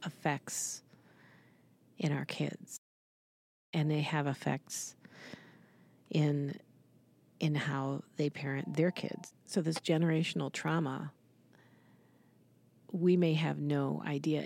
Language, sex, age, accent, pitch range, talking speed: English, female, 40-59, American, 150-170 Hz, 100 wpm